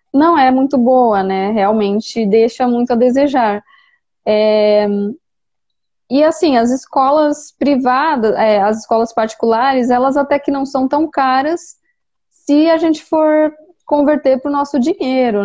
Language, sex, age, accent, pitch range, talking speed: Portuguese, female, 20-39, Brazilian, 220-290 Hz, 140 wpm